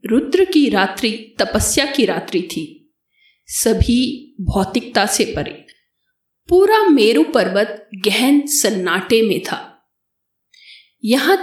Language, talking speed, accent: Hindi, 100 wpm, native